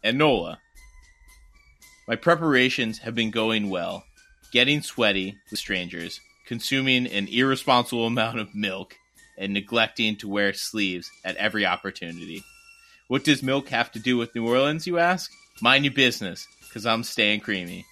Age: 30-49